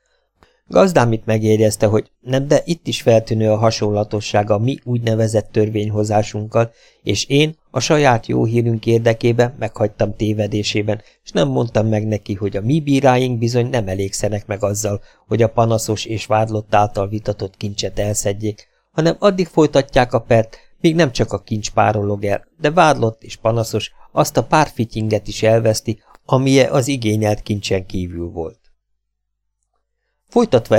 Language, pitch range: Hungarian, 105-125 Hz